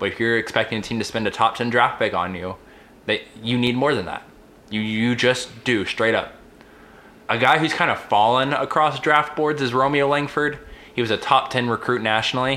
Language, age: English, 20-39